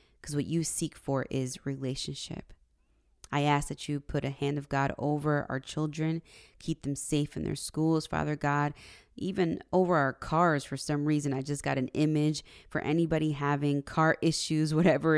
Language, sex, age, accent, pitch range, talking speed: English, female, 20-39, American, 140-155 Hz, 180 wpm